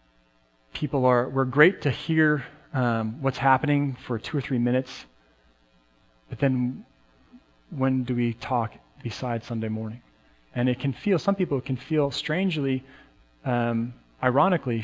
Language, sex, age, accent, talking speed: English, male, 40-59, American, 140 wpm